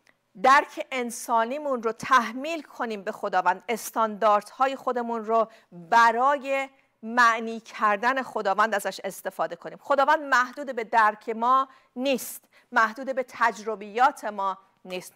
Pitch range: 225-285 Hz